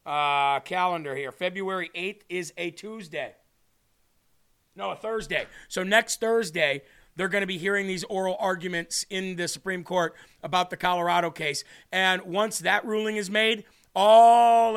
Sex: male